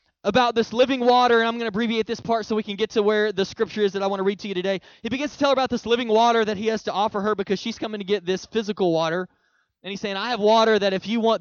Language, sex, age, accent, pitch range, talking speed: English, male, 20-39, American, 195-240 Hz, 320 wpm